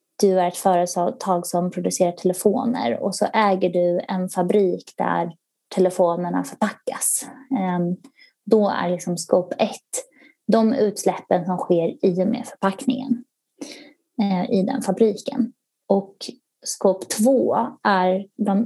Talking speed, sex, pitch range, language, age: 115 wpm, female, 180-245 Hz, Swedish, 20-39